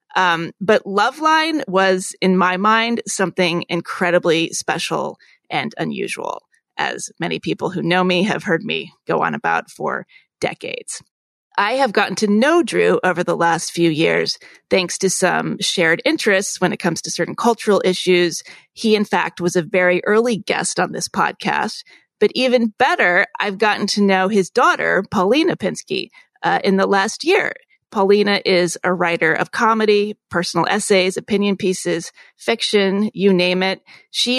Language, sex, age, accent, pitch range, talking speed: English, female, 30-49, American, 180-220 Hz, 160 wpm